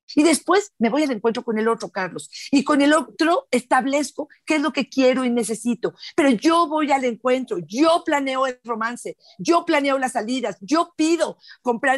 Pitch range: 225-295 Hz